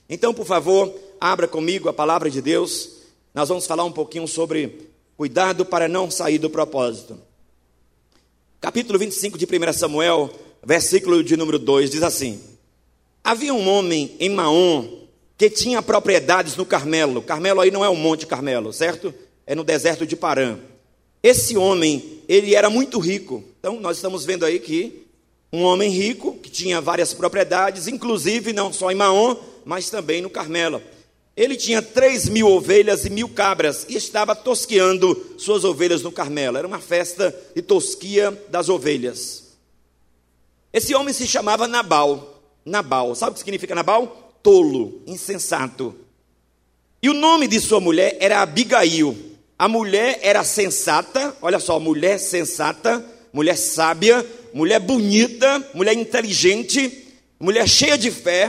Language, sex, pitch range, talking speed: Portuguese, male, 155-220 Hz, 150 wpm